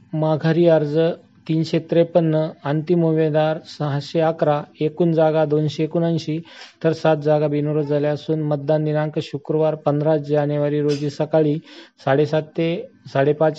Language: Marathi